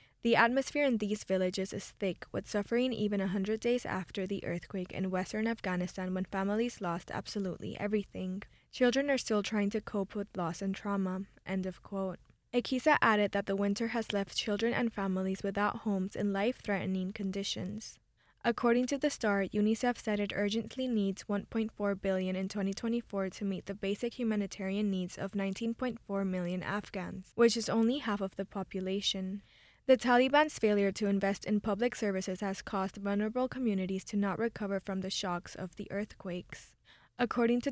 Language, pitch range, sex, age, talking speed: English, 195-225 Hz, female, 10-29, 160 wpm